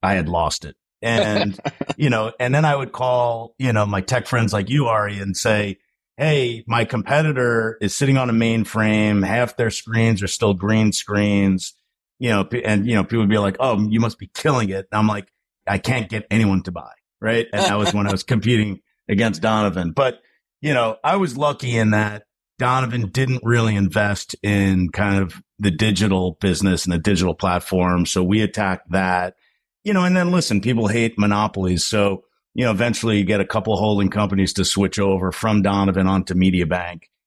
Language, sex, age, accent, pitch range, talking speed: English, male, 50-69, American, 100-120 Hz, 200 wpm